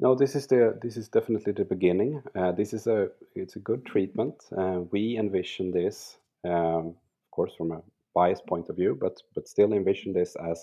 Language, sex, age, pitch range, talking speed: English, male, 30-49, 85-110 Hz, 205 wpm